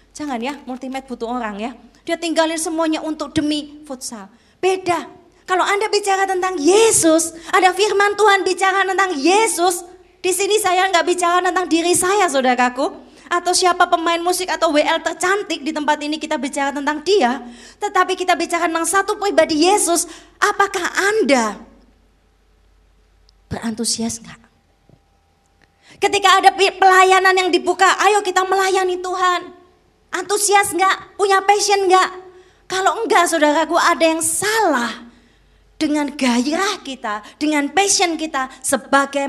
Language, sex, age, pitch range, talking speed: Indonesian, female, 20-39, 250-370 Hz, 130 wpm